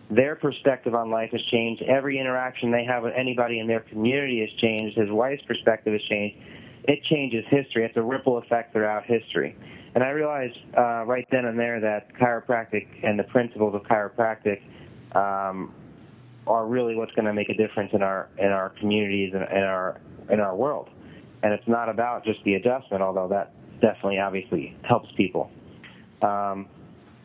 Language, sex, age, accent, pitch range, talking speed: English, male, 30-49, American, 110-125 Hz, 175 wpm